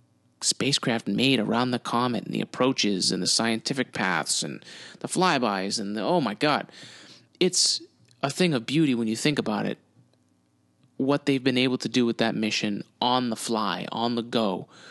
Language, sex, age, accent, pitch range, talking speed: English, male, 30-49, American, 115-145 Hz, 180 wpm